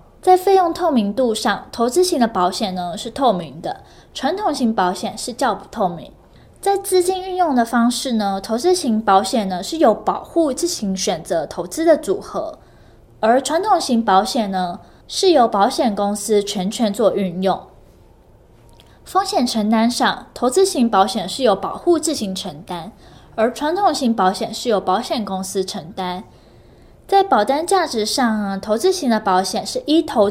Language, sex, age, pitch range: Chinese, female, 10-29, 195-310 Hz